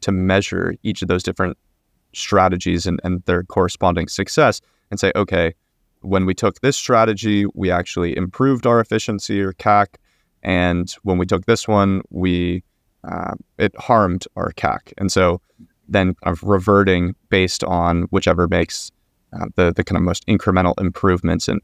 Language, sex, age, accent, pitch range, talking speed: English, male, 30-49, American, 90-110 Hz, 160 wpm